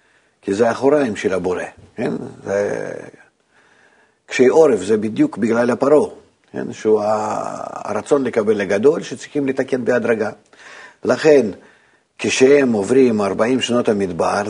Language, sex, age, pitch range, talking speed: Hebrew, male, 50-69, 115-135 Hz, 110 wpm